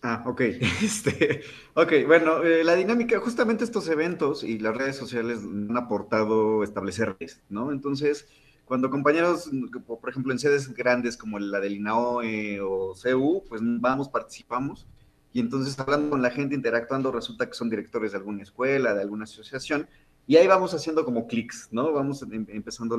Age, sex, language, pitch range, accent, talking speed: 30-49, male, Spanish, 110-145 Hz, Mexican, 160 wpm